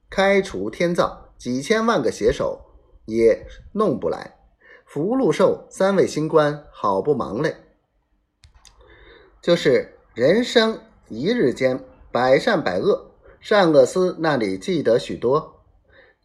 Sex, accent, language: male, native, Chinese